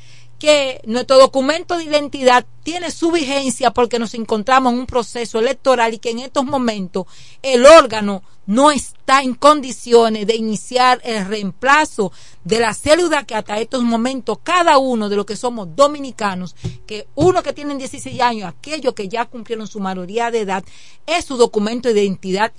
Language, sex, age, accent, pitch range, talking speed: Spanish, female, 40-59, American, 215-285 Hz, 165 wpm